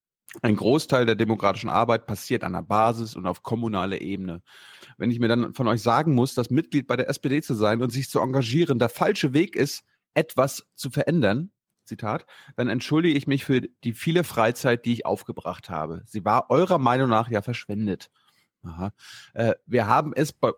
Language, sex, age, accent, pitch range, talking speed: German, male, 30-49, German, 110-135 Hz, 190 wpm